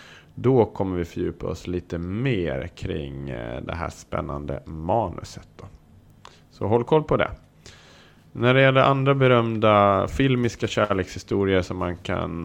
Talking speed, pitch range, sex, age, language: 135 wpm, 85-115 Hz, male, 30-49, Swedish